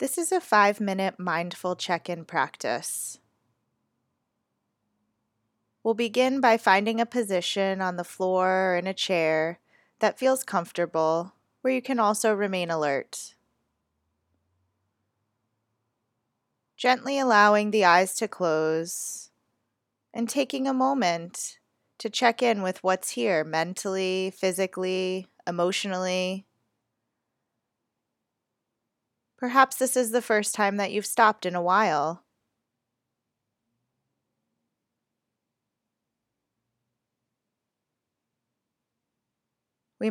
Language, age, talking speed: English, 20-39, 95 wpm